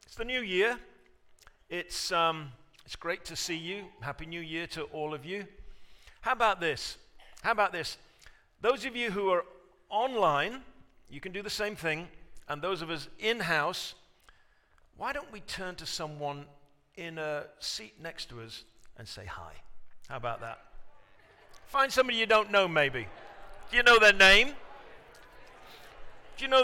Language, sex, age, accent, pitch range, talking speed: English, male, 50-69, British, 155-225 Hz, 165 wpm